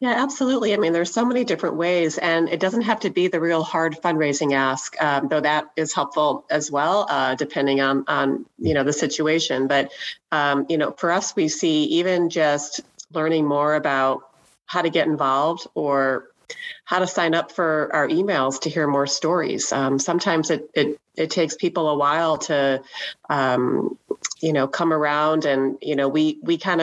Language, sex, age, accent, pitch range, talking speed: English, female, 30-49, American, 140-165 Hz, 190 wpm